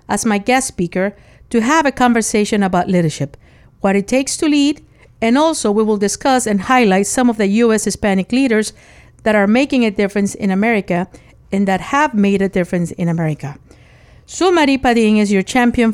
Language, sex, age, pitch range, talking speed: English, female, 50-69, 195-245 Hz, 185 wpm